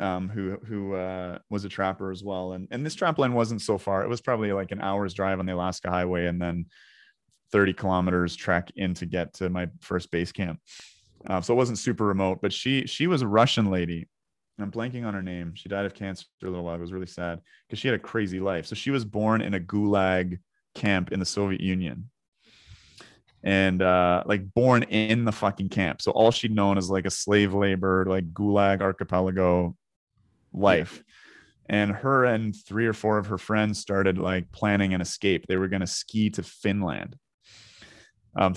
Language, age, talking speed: English, 30-49, 205 wpm